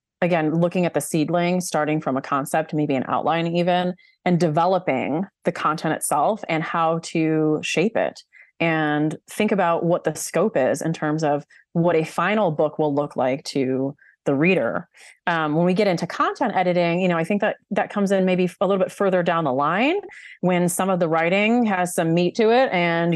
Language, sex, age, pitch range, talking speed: English, female, 30-49, 155-185 Hz, 200 wpm